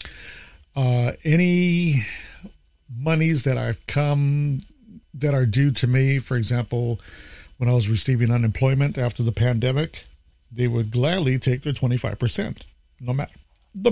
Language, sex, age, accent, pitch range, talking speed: English, male, 50-69, American, 100-135 Hz, 125 wpm